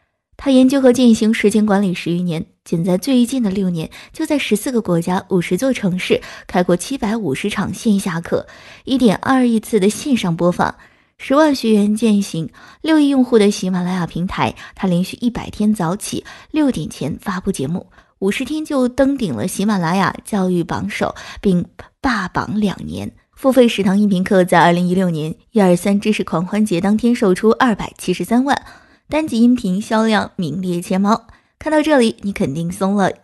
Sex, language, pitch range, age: female, Chinese, 180-230 Hz, 20-39